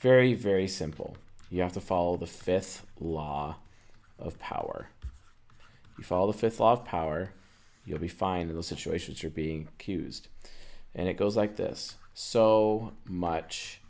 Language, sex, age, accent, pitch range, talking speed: English, male, 30-49, American, 80-100 Hz, 150 wpm